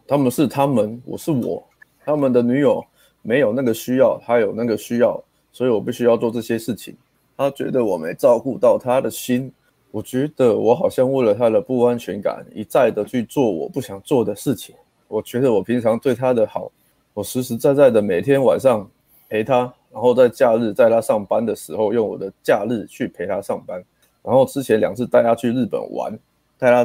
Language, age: Chinese, 20-39